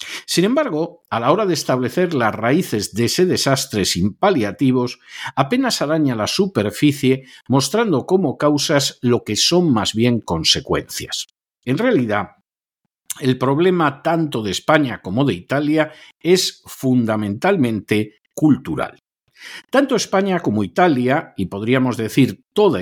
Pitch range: 115-170 Hz